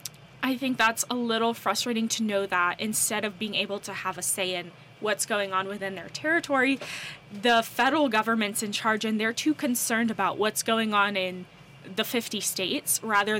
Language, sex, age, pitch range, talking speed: English, female, 10-29, 190-240 Hz, 190 wpm